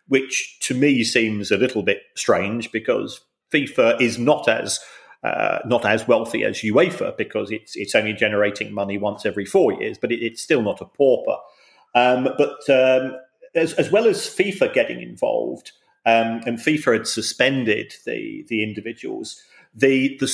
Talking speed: 165 wpm